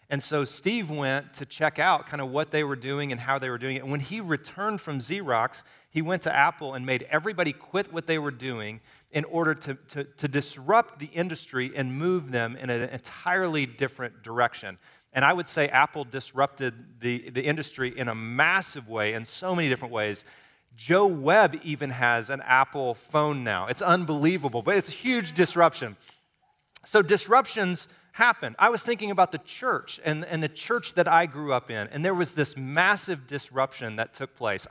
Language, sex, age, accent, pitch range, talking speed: English, male, 30-49, American, 130-175 Hz, 195 wpm